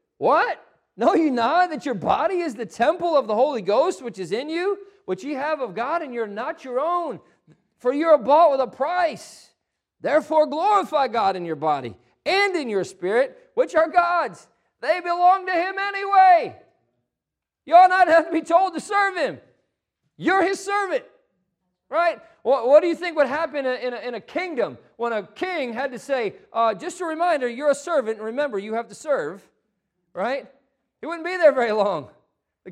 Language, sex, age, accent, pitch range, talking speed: English, male, 40-59, American, 225-335 Hz, 190 wpm